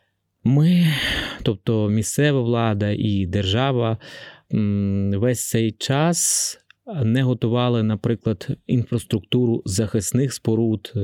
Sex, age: male, 20-39